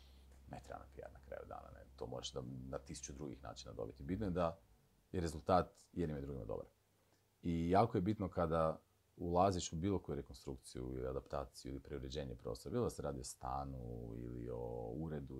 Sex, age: male, 40-59